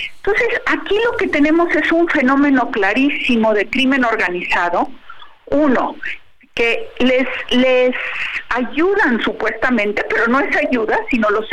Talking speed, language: 125 wpm, Spanish